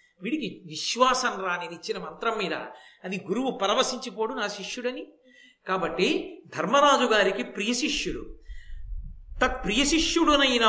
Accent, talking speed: native, 110 wpm